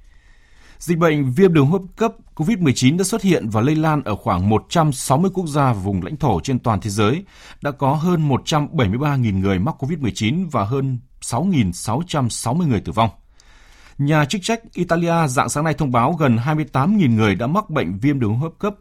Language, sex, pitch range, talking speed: Vietnamese, male, 100-145 Hz, 185 wpm